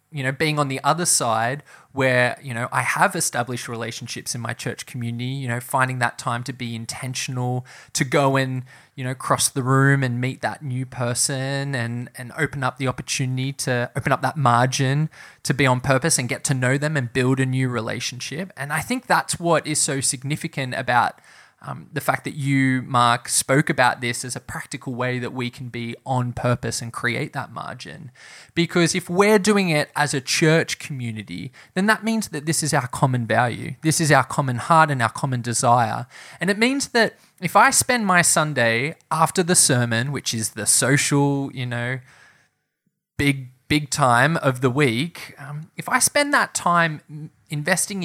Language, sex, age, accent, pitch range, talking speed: English, male, 20-39, Australian, 125-155 Hz, 190 wpm